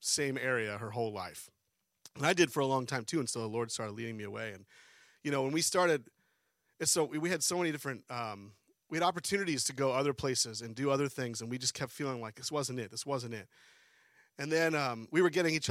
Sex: male